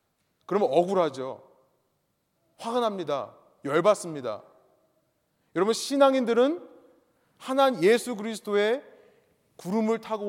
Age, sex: 30-49, male